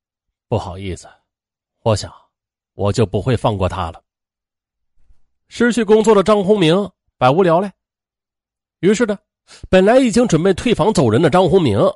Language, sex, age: Chinese, male, 30-49